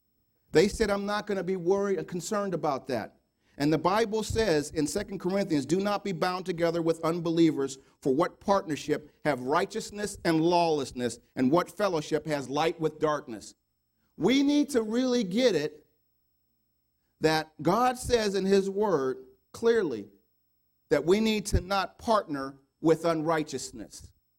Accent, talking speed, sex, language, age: American, 150 wpm, male, English, 40-59